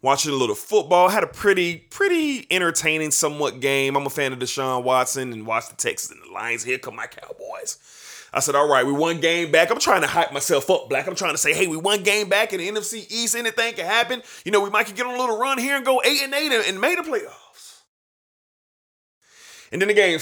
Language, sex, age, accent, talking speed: English, male, 30-49, American, 250 wpm